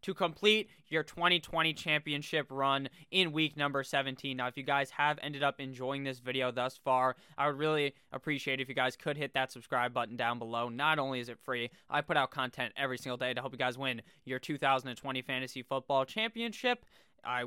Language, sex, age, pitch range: English, male, 20-39, 125-150 Hz